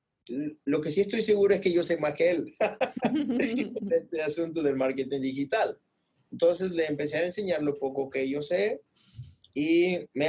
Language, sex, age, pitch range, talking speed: Spanish, male, 30-49, 125-170 Hz, 175 wpm